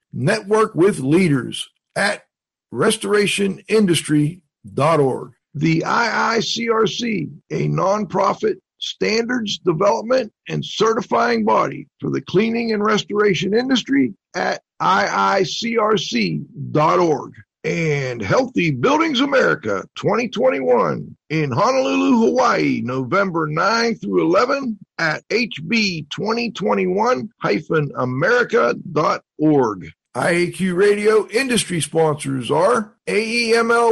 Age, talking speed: 50-69, 80 wpm